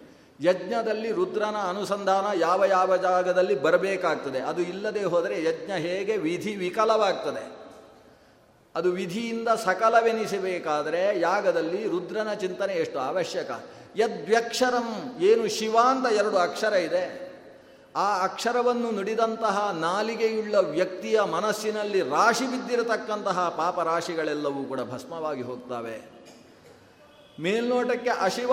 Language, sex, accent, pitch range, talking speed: Kannada, male, native, 180-235 Hz, 90 wpm